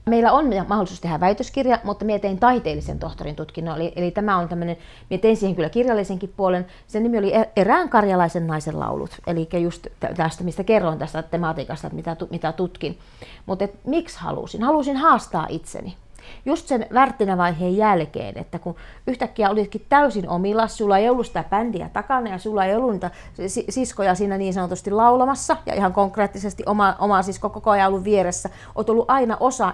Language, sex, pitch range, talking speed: Finnish, female, 175-230 Hz, 170 wpm